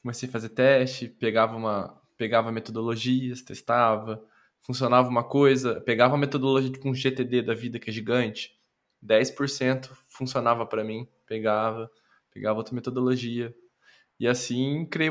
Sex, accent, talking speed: male, Brazilian, 140 wpm